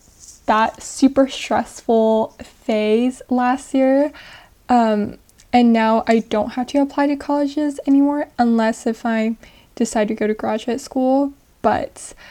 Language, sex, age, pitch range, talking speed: English, female, 10-29, 220-260 Hz, 130 wpm